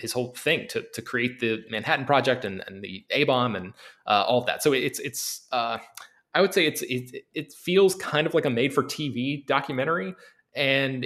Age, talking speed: 20-39, 210 wpm